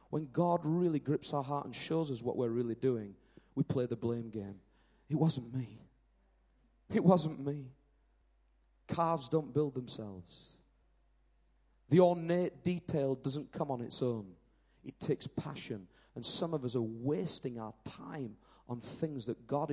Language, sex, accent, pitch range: English, male, British, 110-150 Hz